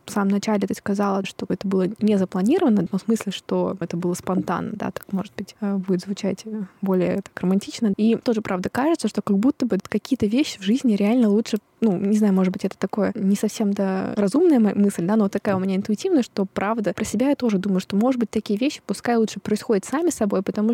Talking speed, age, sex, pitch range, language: 220 wpm, 20-39, female, 195-225 Hz, Russian